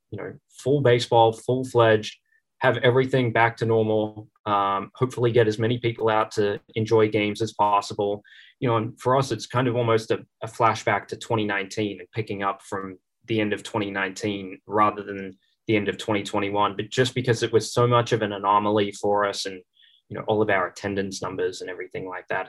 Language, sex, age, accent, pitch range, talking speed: English, male, 20-39, Australian, 105-115 Hz, 195 wpm